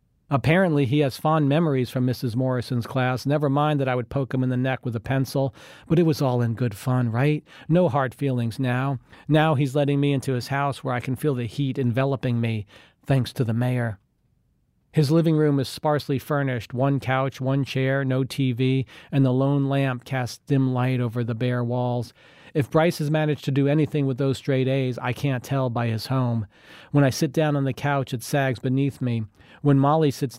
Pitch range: 120-140 Hz